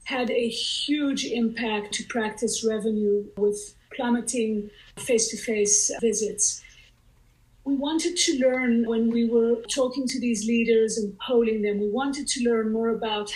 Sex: female